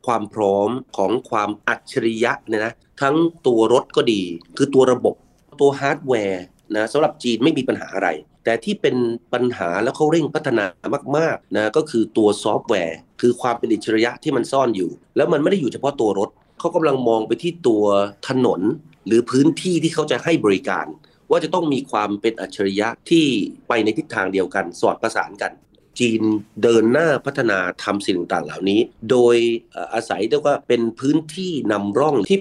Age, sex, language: 30-49, male, Thai